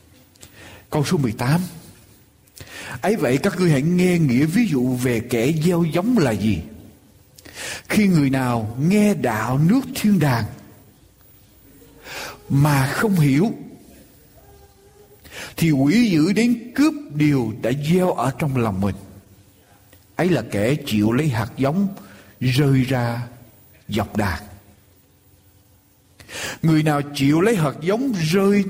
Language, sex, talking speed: Vietnamese, male, 125 wpm